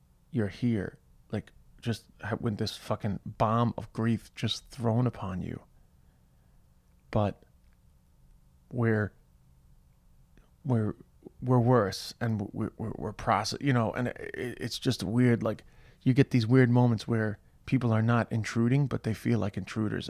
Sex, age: male, 30-49